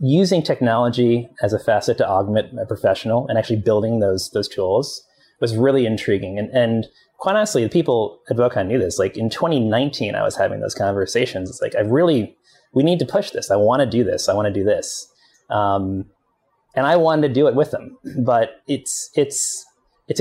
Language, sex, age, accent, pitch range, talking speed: English, male, 30-49, American, 105-145 Hz, 200 wpm